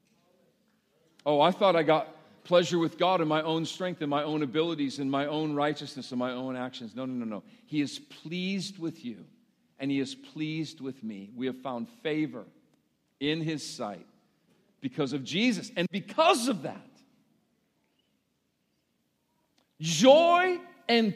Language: English